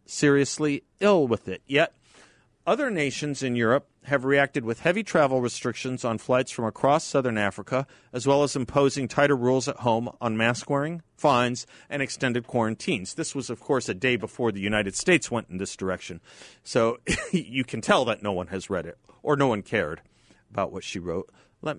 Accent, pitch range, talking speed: American, 115-145 Hz, 190 wpm